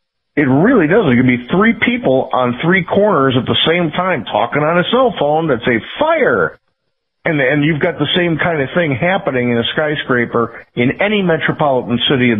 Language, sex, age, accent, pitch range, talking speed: English, male, 50-69, American, 120-175 Hz, 200 wpm